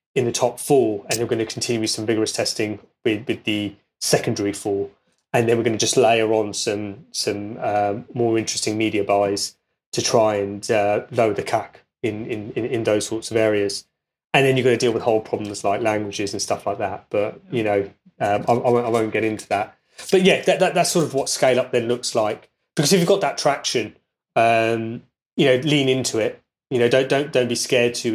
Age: 20-39